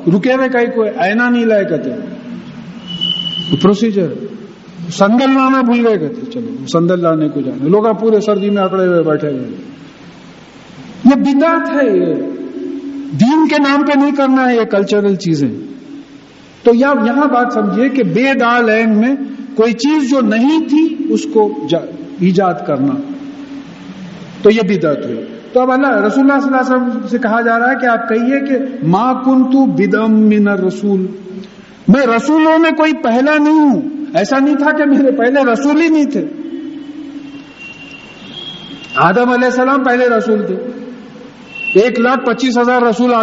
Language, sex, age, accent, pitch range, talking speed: English, male, 50-69, Indian, 205-275 Hz, 95 wpm